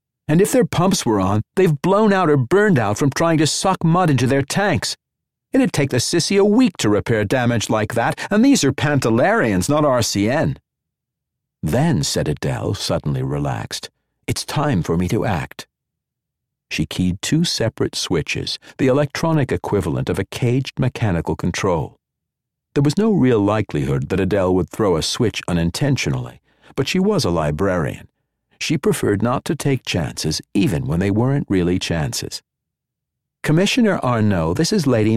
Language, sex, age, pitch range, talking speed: English, male, 60-79, 100-155 Hz, 160 wpm